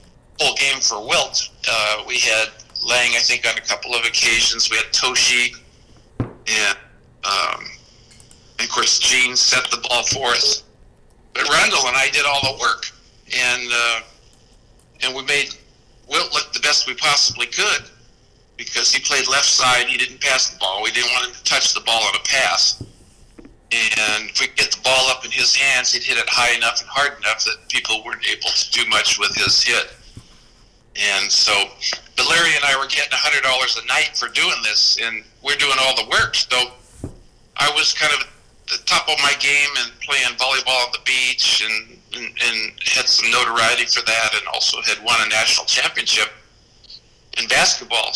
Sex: male